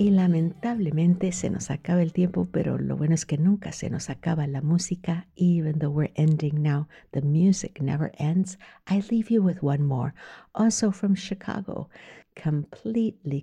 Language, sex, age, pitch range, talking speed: English, female, 60-79, 150-190 Hz, 165 wpm